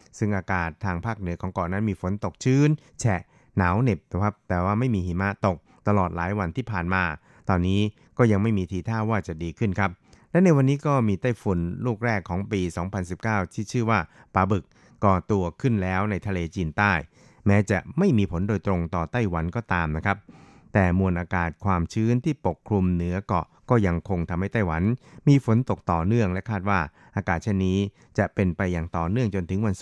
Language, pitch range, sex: Thai, 90-110 Hz, male